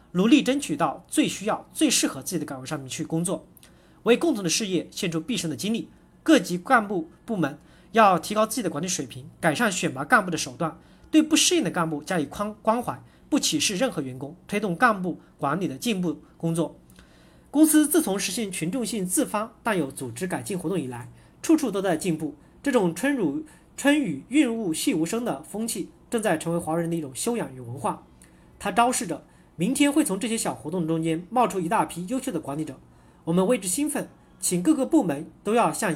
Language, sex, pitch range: Chinese, male, 160-250 Hz